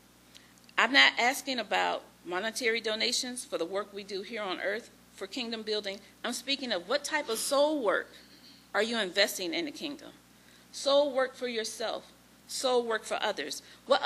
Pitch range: 195-275 Hz